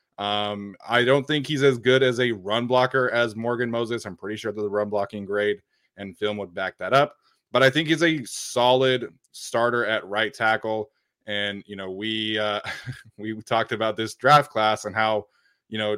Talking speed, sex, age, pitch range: 200 wpm, male, 20-39, 105-135 Hz